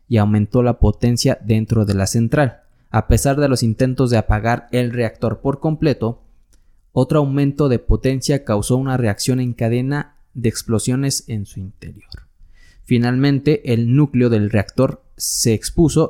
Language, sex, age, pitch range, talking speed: Spanish, male, 20-39, 105-125 Hz, 150 wpm